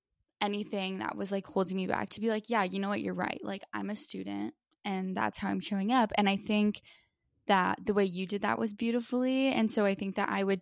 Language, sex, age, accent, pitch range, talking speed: English, female, 10-29, American, 185-220 Hz, 250 wpm